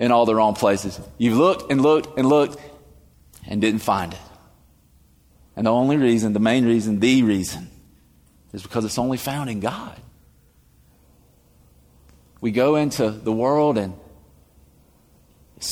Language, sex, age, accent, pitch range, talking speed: English, male, 30-49, American, 90-120 Hz, 145 wpm